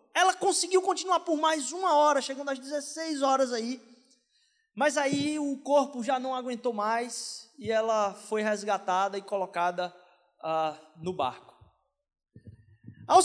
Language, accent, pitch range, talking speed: Portuguese, Brazilian, 235-335 Hz, 130 wpm